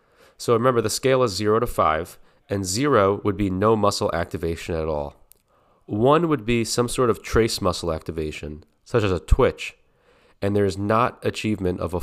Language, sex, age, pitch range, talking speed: English, male, 30-49, 90-110 Hz, 185 wpm